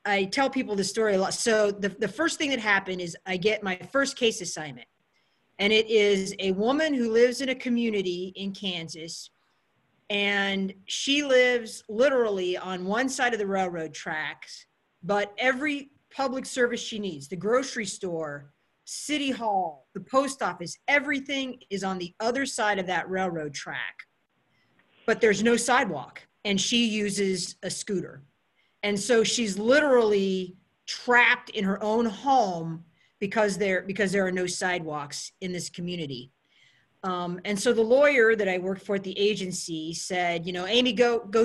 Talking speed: 165 wpm